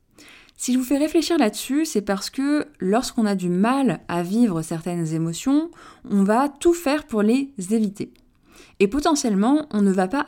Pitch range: 170-255 Hz